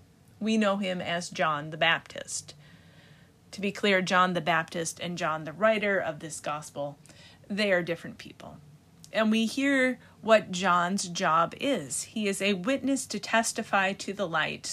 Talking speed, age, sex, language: 165 wpm, 30-49, female, English